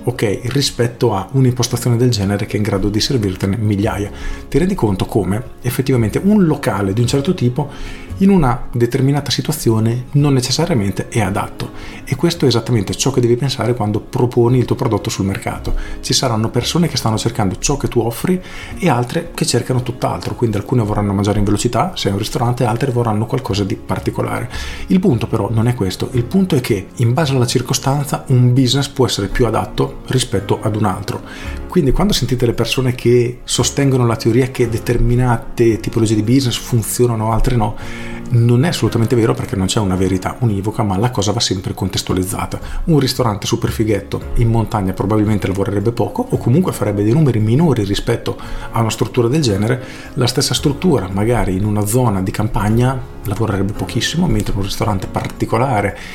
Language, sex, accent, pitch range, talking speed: Italian, male, native, 105-130 Hz, 185 wpm